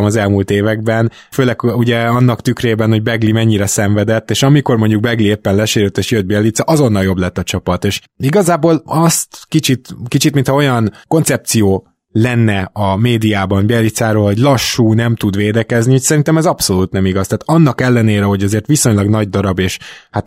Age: 20-39